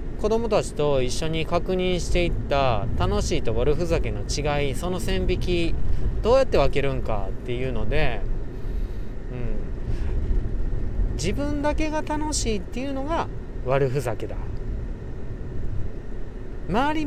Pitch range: 115-175 Hz